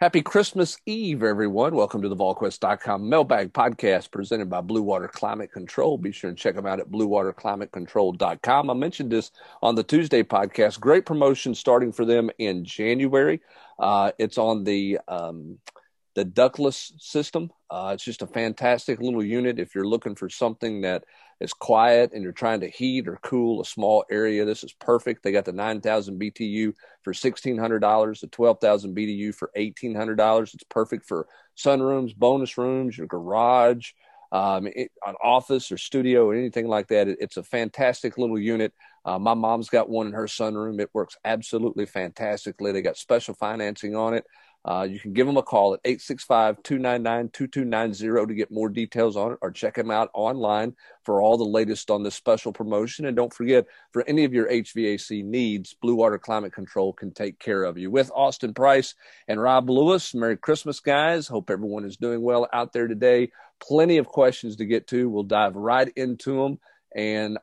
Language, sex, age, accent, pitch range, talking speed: English, male, 40-59, American, 105-125 Hz, 180 wpm